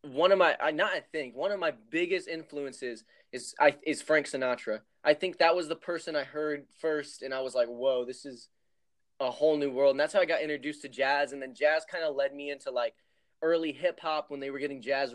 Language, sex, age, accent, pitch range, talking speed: English, male, 20-39, American, 135-165 Hz, 240 wpm